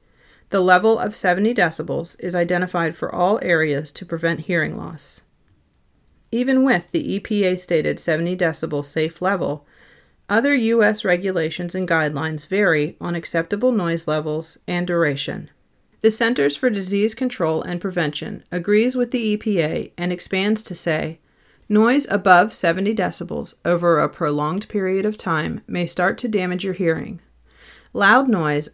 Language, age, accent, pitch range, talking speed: English, 40-59, American, 160-205 Hz, 140 wpm